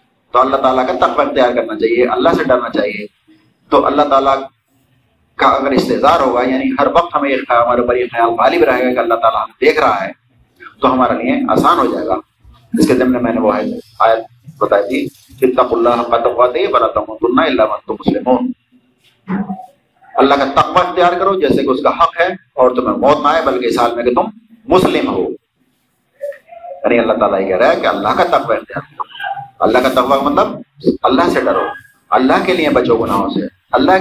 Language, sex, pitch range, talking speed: Urdu, male, 125-205 Hz, 190 wpm